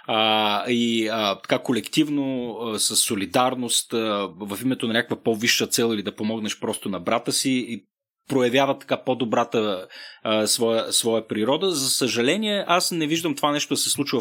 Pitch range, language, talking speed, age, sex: 115-155 Hz, Bulgarian, 170 wpm, 30-49, male